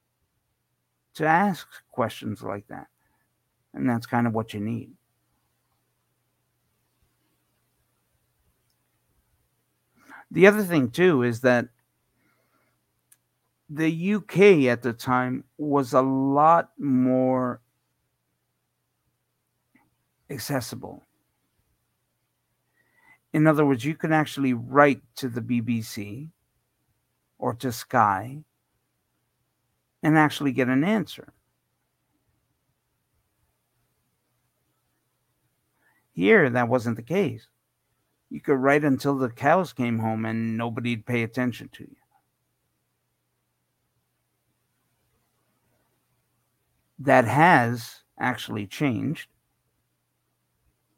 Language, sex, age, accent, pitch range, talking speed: English, male, 50-69, American, 115-140 Hz, 80 wpm